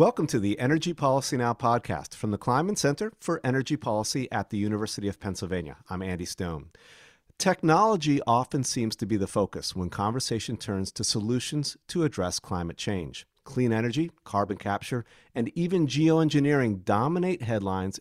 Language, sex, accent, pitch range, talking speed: English, male, American, 105-145 Hz, 155 wpm